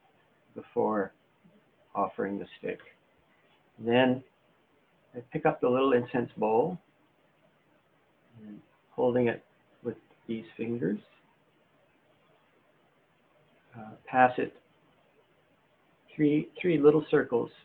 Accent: American